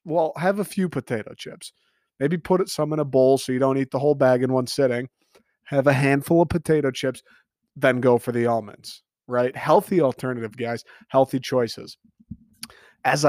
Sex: male